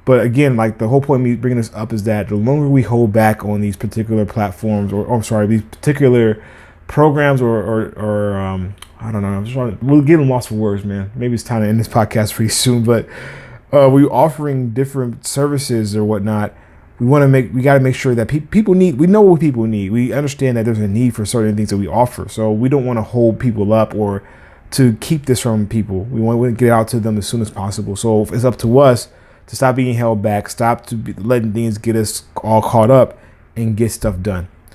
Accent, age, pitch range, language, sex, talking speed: American, 20-39, 105-125 Hz, English, male, 245 wpm